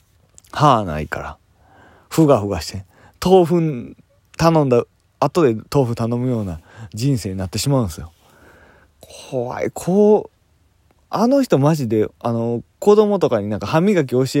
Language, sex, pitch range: Japanese, male, 100-150 Hz